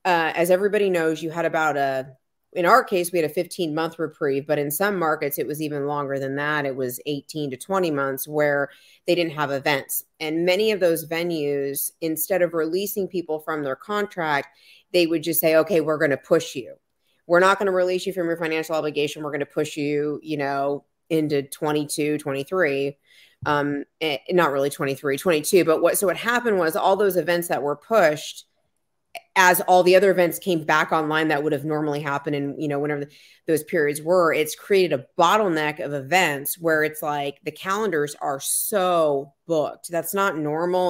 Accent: American